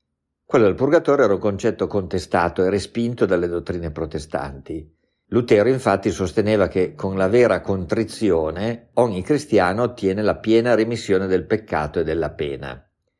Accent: native